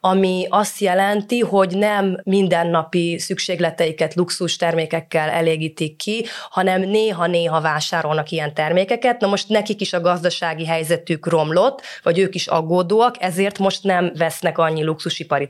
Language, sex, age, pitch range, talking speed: Hungarian, female, 20-39, 155-185 Hz, 130 wpm